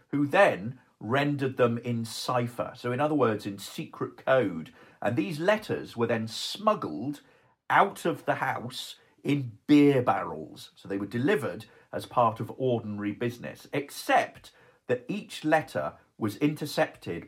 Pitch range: 110-145 Hz